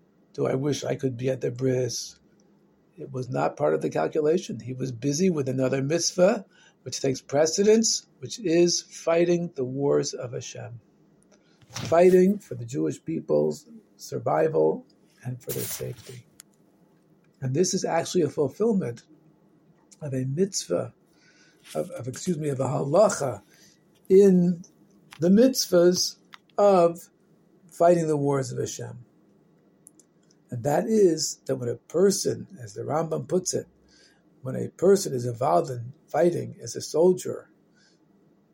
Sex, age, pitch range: male, 50-69, 135-180 Hz